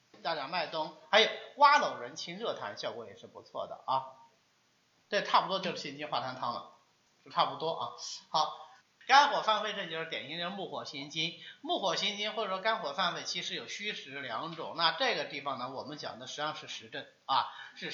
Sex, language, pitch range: male, Chinese, 150-215 Hz